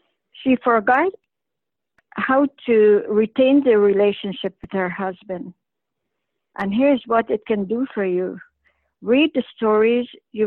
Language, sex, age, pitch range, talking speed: English, female, 60-79, 200-235 Hz, 125 wpm